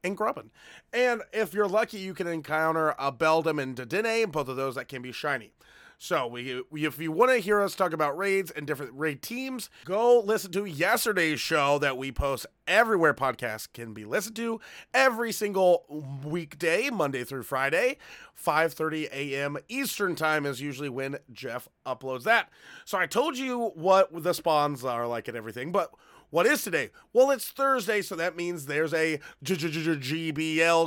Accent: American